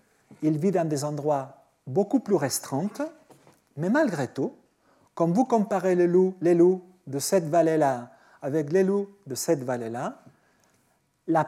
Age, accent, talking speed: 40-59, French, 145 wpm